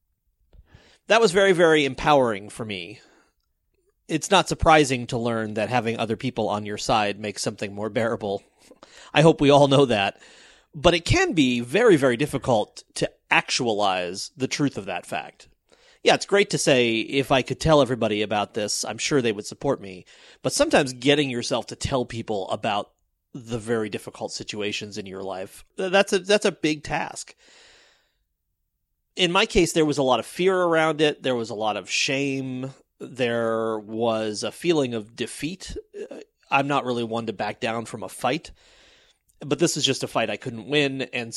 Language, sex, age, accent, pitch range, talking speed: English, male, 30-49, American, 115-165 Hz, 180 wpm